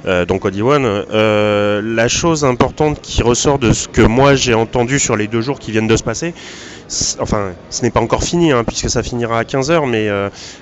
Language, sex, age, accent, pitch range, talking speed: French, male, 30-49, French, 110-150 Hz, 220 wpm